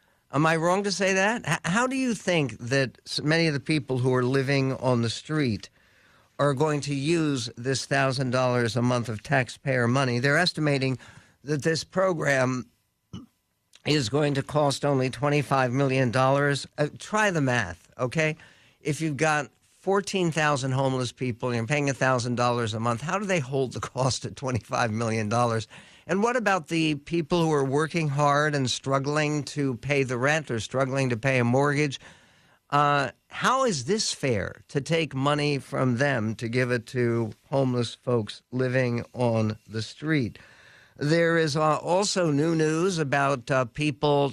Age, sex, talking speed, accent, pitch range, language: 60-79, male, 170 wpm, American, 120-150 Hz, English